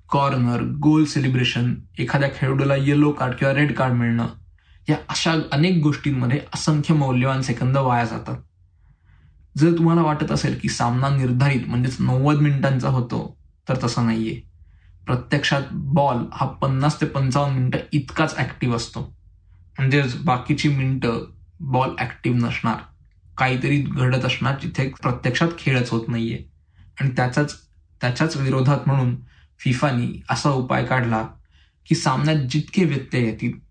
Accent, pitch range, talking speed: native, 115-145 Hz, 130 wpm